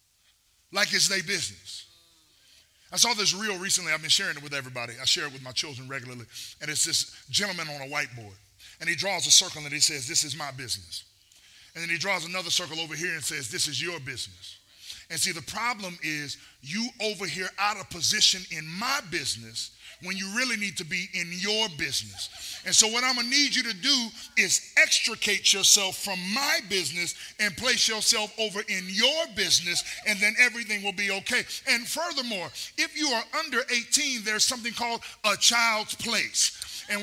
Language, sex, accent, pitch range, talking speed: English, male, American, 150-225 Hz, 195 wpm